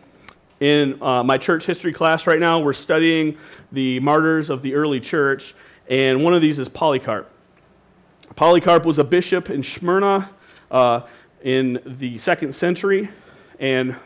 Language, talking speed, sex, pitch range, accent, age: English, 145 wpm, male, 135-175 Hz, American, 40-59